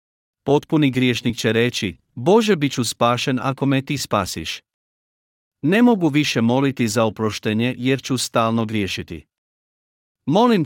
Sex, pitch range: male, 110-140 Hz